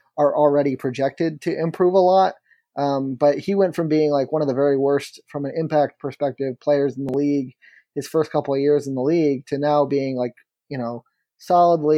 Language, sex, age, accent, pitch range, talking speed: English, male, 30-49, American, 135-155 Hz, 210 wpm